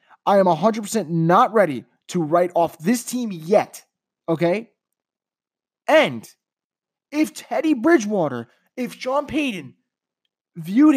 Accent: American